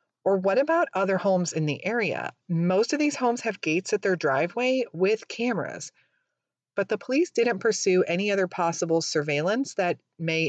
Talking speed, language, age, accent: 170 wpm, English, 40-59, American